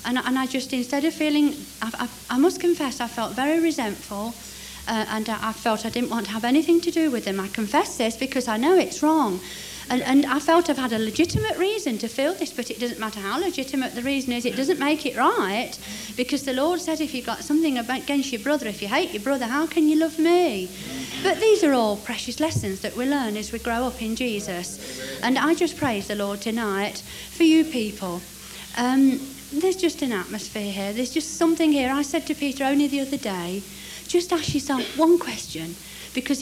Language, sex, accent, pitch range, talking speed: English, female, British, 225-315 Hz, 220 wpm